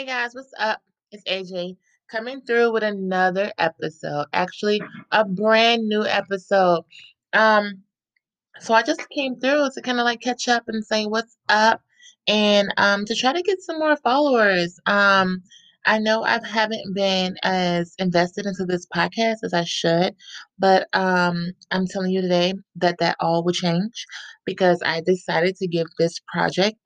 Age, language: 20-39, English